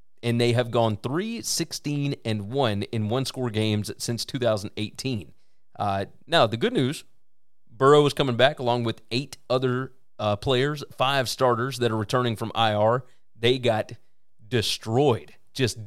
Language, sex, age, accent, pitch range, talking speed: English, male, 30-49, American, 115-145 Hz, 140 wpm